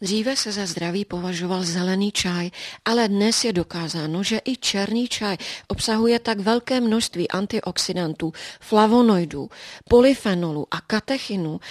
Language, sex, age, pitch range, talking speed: Czech, female, 40-59, 175-215 Hz, 125 wpm